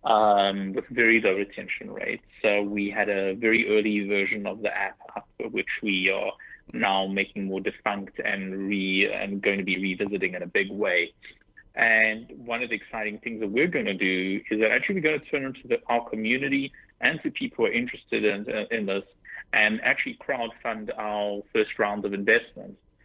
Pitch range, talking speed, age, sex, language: 100-115 Hz, 195 wpm, 30-49, male, English